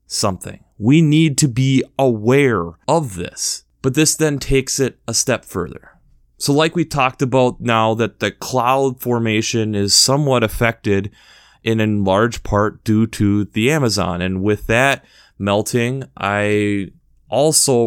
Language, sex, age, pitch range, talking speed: English, male, 30-49, 105-140 Hz, 145 wpm